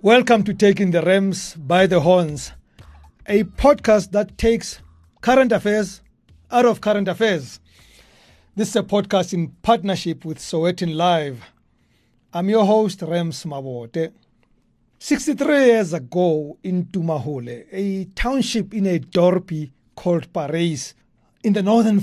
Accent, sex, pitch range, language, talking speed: South African, male, 160-210 Hz, English, 130 wpm